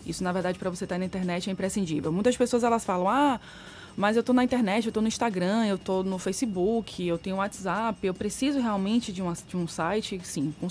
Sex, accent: female, Brazilian